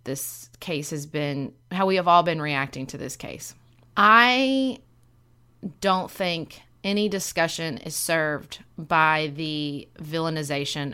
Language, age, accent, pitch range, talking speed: English, 30-49, American, 145-185 Hz, 125 wpm